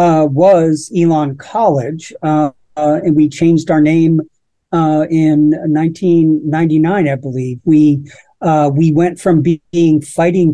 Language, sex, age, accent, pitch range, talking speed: English, male, 50-69, American, 155-175 Hz, 130 wpm